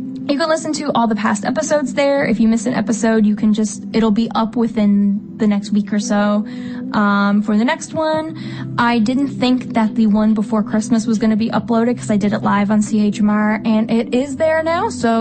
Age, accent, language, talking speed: 10-29, American, English, 225 wpm